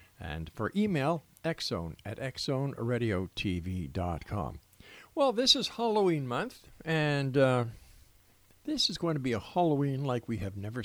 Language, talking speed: English, 135 wpm